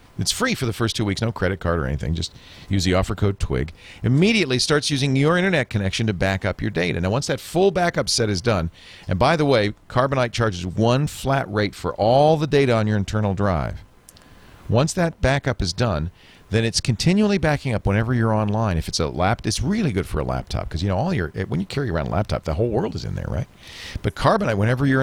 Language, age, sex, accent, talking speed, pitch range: English, 40-59, male, American, 240 wpm, 90-125 Hz